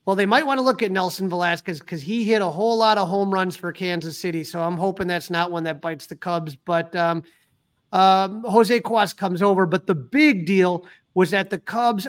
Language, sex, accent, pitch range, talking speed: English, male, American, 180-215 Hz, 230 wpm